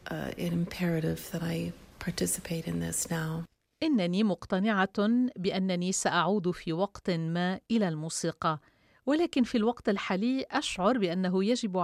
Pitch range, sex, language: 180-230 Hz, female, Arabic